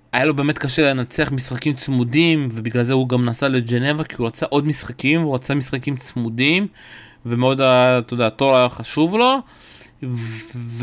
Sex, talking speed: male, 165 wpm